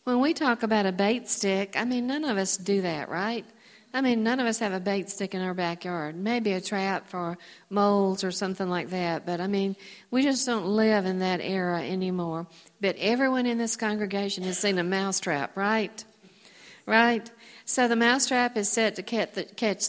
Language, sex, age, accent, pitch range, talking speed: English, female, 50-69, American, 185-225 Hz, 195 wpm